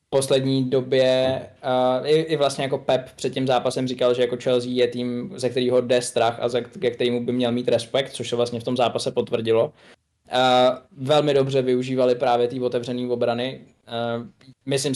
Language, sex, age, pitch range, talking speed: Czech, male, 20-39, 120-130 Hz, 195 wpm